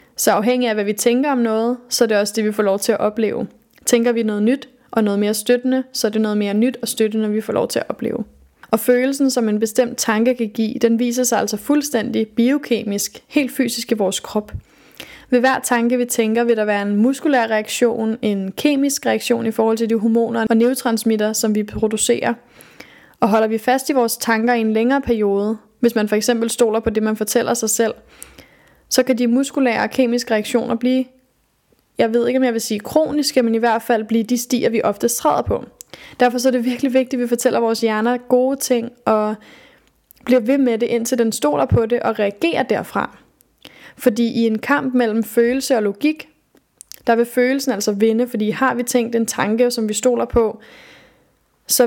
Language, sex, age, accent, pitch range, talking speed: Danish, female, 20-39, native, 220-250 Hz, 210 wpm